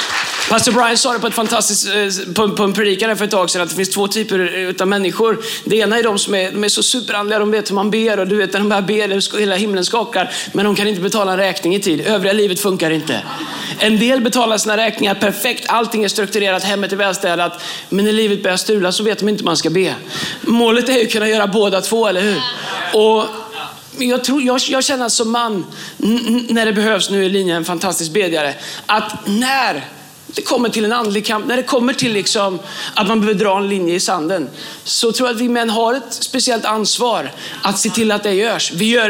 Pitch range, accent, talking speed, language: 190-225 Hz, native, 235 wpm, Swedish